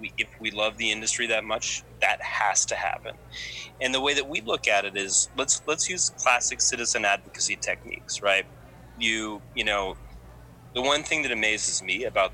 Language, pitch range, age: English, 100-115 Hz, 30-49